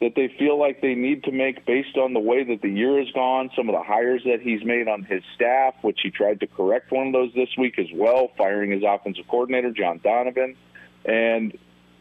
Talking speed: 230 wpm